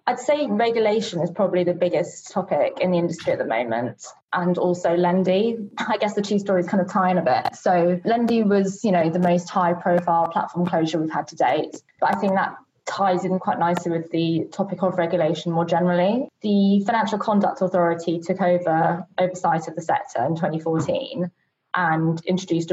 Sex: female